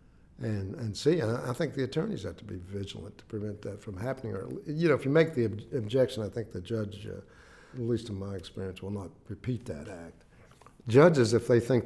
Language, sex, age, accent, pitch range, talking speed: English, male, 60-79, American, 100-120 Hz, 215 wpm